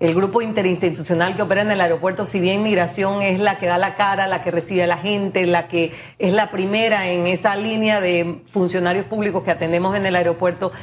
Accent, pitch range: American, 170-210 Hz